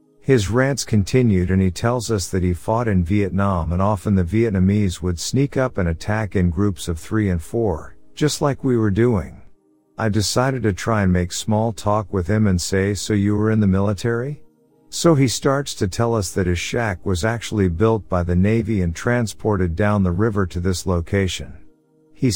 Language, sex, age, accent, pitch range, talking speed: English, male, 50-69, American, 90-115 Hz, 200 wpm